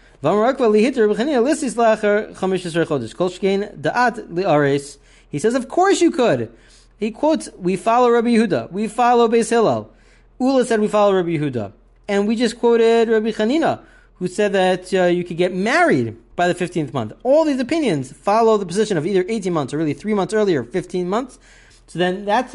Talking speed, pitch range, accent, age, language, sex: 160 wpm, 155-220 Hz, American, 40-59, English, male